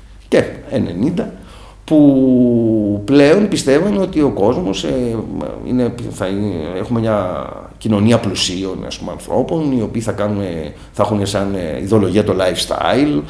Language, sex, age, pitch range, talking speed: Greek, male, 50-69, 95-145 Hz, 125 wpm